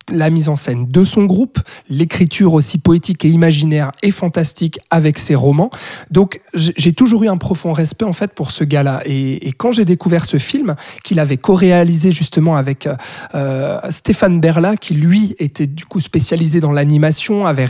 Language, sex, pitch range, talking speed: French, male, 150-185 Hz, 180 wpm